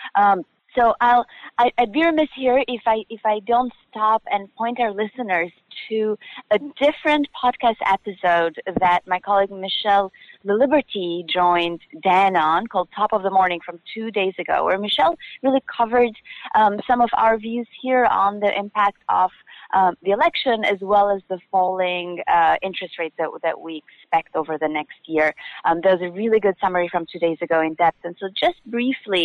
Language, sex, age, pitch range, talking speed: English, female, 30-49, 170-230 Hz, 185 wpm